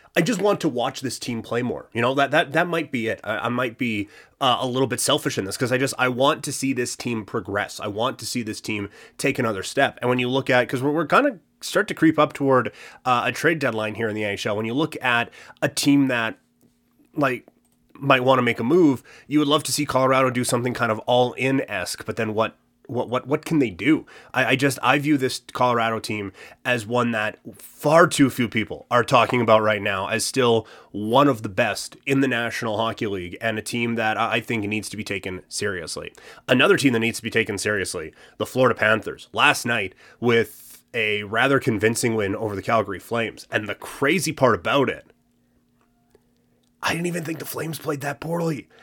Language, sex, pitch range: English, male, 110-145 Hz